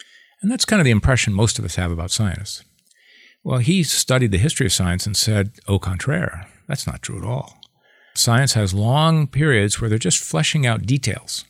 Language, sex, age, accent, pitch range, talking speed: English, male, 50-69, American, 100-135 Hz, 200 wpm